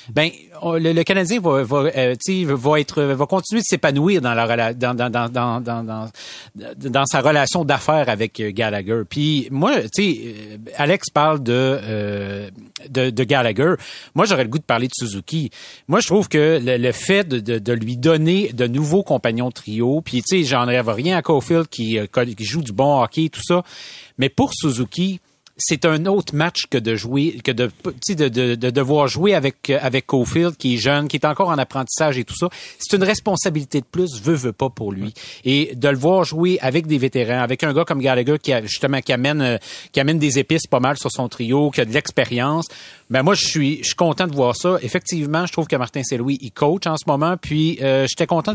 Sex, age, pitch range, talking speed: male, 30-49, 125-170 Hz, 215 wpm